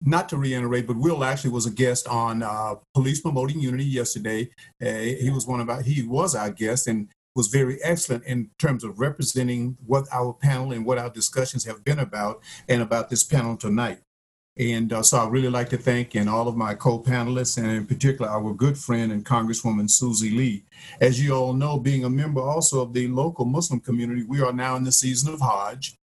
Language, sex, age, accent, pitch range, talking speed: English, male, 50-69, American, 115-135 Hz, 210 wpm